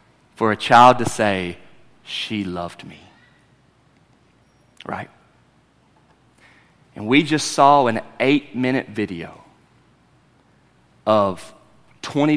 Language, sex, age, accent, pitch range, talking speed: English, male, 30-49, American, 100-125 Hz, 90 wpm